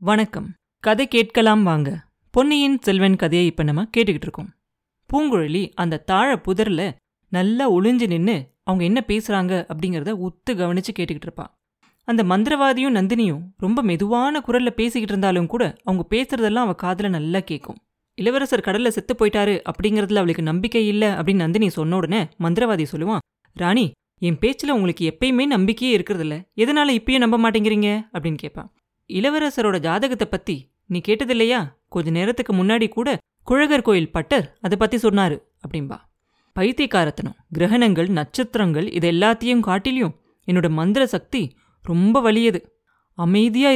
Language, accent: Tamil, native